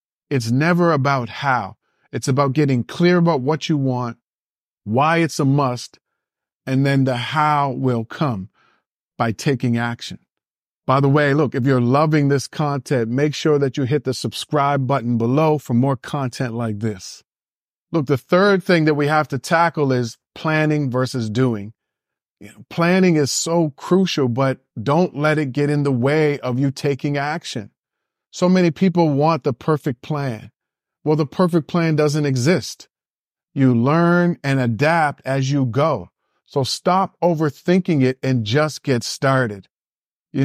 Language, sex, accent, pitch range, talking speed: English, male, American, 125-155 Hz, 155 wpm